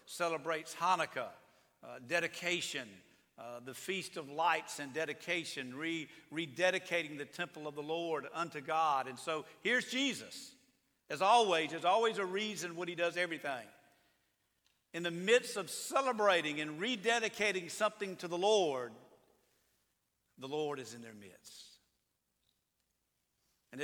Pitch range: 150-185 Hz